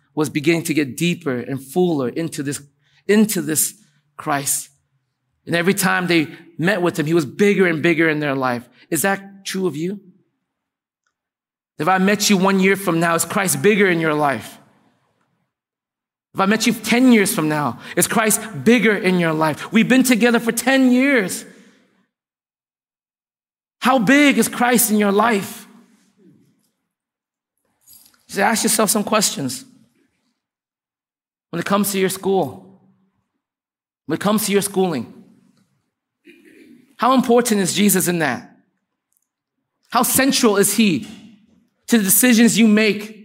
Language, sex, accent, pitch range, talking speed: English, male, American, 175-235 Hz, 145 wpm